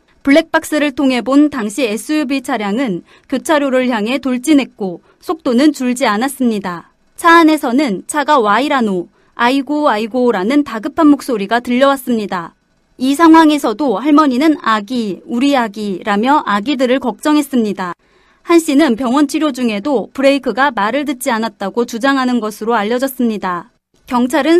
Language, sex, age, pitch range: Korean, female, 30-49, 230-310 Hz